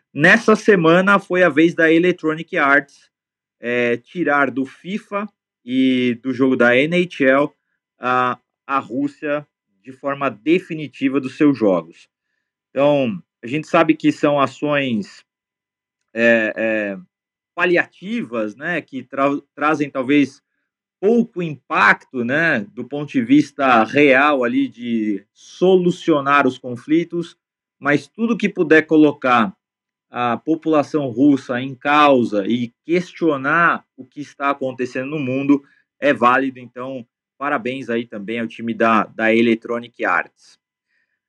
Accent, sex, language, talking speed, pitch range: Brazilian, male, Portuguese, 120 wpm, 125-180 Hz